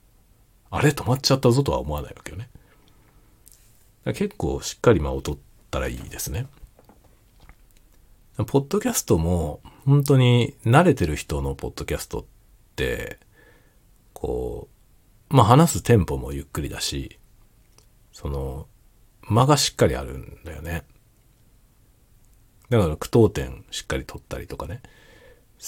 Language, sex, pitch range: Japanese, male, 80-115 Hz